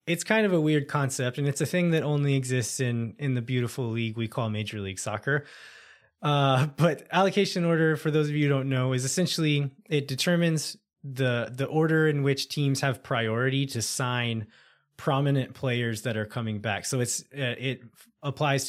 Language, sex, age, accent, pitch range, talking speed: English, male, 20-39, American, 115-145 Hz, 185 wpm